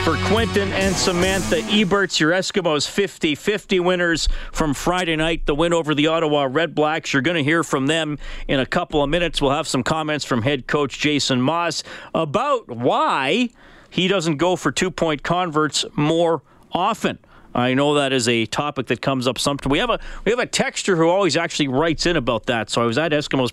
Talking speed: 195 wpm